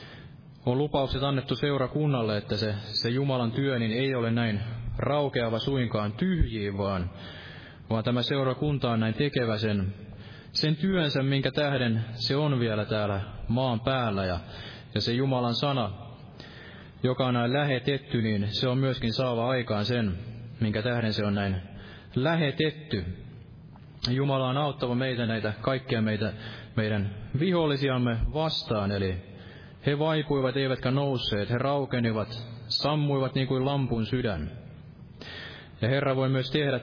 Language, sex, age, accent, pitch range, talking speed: Finnish, male, 20-39, native, 110-135 Hz, 135 wpm